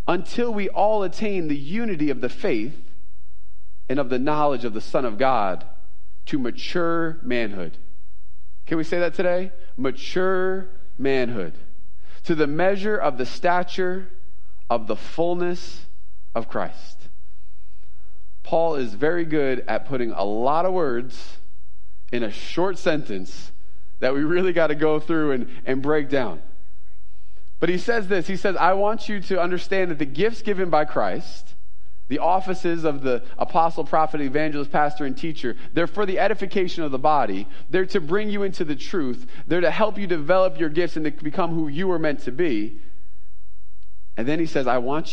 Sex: male